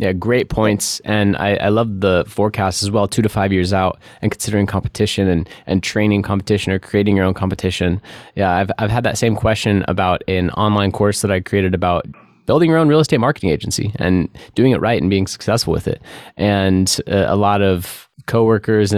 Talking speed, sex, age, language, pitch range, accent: 210 wpm, male, 20-39, English, 95-110 Hz, American